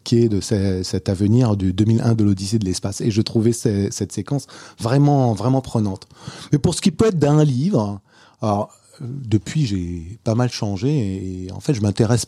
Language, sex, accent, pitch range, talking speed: French, male, French, 100-135 Hz, 175 wpm